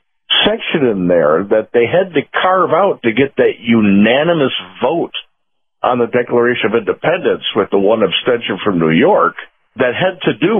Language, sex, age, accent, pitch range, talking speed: English, male, 50-69, American, 120-175 Hz, 170 wpm